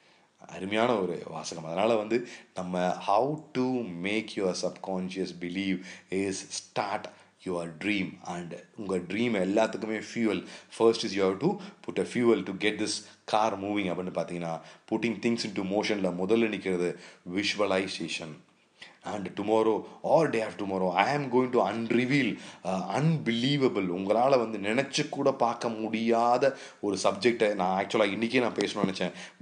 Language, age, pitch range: Tamil, 30-49, 95-120 Hz